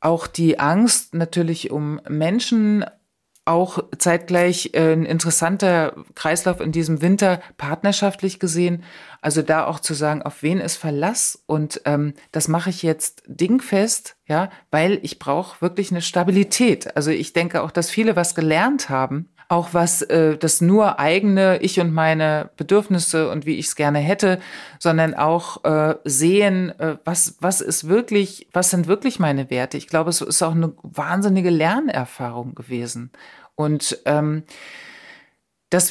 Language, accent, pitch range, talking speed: German, German, 150-185 Hz, 145 wpm